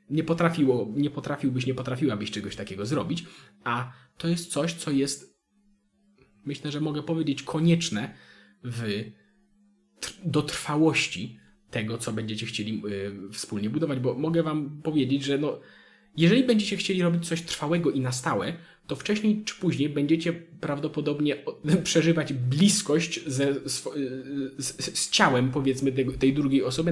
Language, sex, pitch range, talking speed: Polish, male, 115-155 Hz, 135 wpm